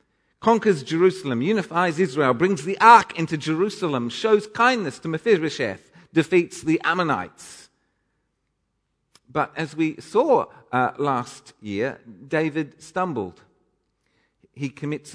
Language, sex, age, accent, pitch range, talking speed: English, male, 50-69, British, 140-185 Hz, 105 wpm